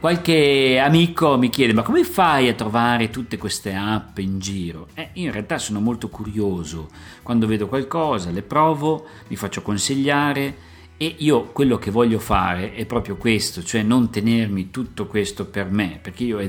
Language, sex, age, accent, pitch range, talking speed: Italian, male, 50-69, native, 100-120 Hz, 170 wpm